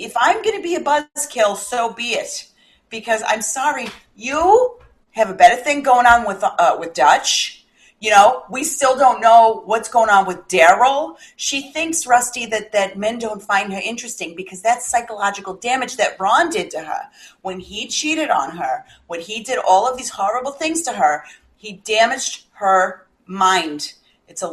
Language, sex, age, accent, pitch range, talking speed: English, female, 40-59, American, 200-275 Hz, 185 wpm